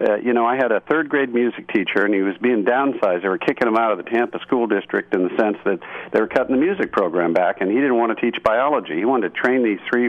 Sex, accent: male, American